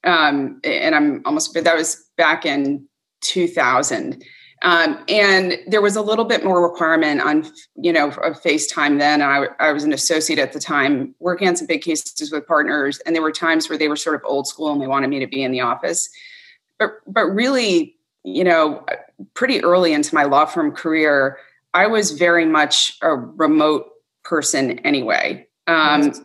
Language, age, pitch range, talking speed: English, 30-49, 150-195 Hz, 185 wpm